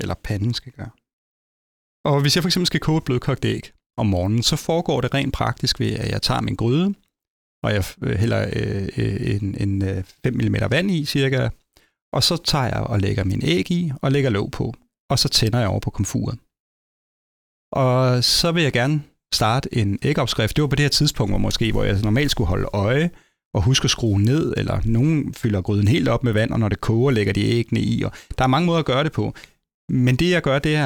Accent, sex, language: native, male, Danish